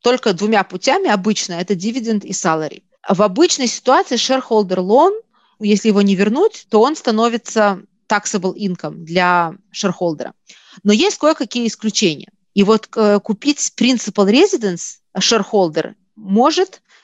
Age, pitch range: 20-39, 195-240 Hz